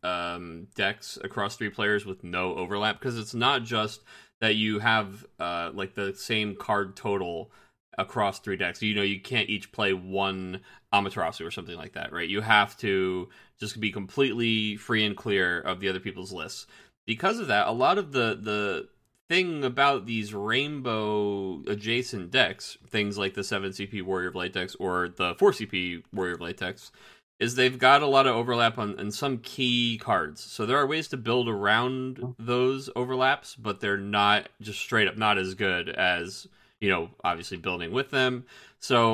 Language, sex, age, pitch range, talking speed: English, male, 30-49, 100-120 Hz, 180 wpm